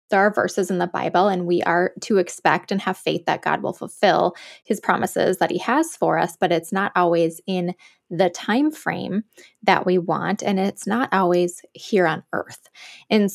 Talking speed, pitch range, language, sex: 200 wpm, 175-210 Hz, English, female